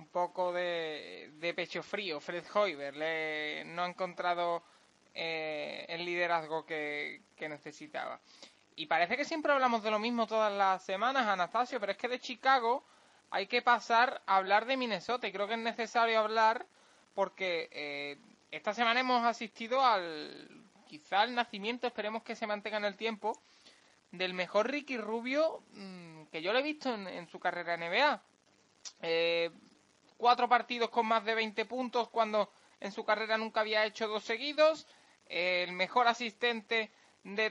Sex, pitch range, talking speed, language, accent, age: male, 185-235 Hz, 160 wpm, Spanish, Spanish, 20-39